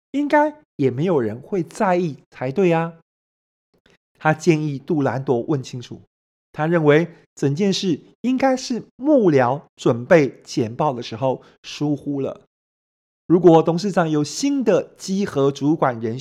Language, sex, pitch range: Chinese, male, 135-180 Hz